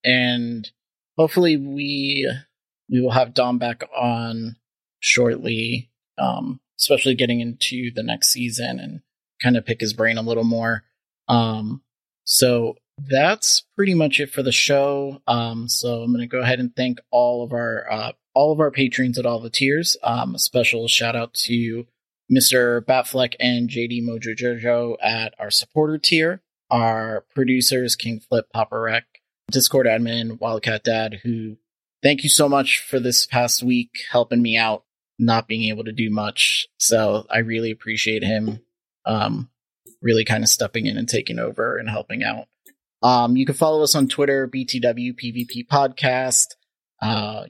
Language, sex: English, male